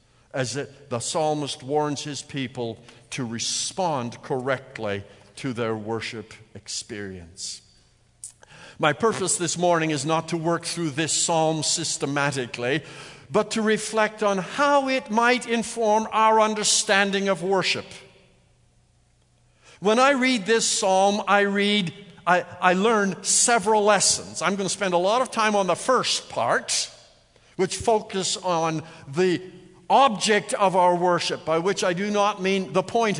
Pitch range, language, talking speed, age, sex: 130-200 Hz, English, 140 wpm, 60-79, male